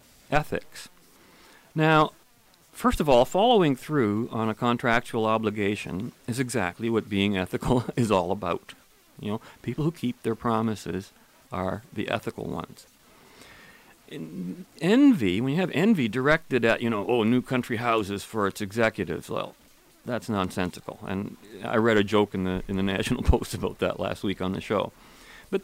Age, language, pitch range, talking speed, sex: 40-59, English, 105-155 Hz, 160 wpm, male